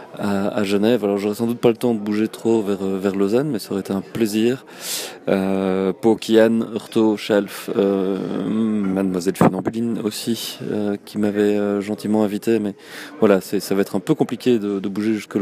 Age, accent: 20-39, French